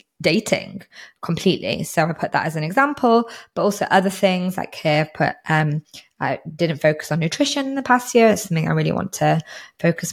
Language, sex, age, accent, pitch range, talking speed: English, female, 20-39, British, 165-205 Hz, 195 wpm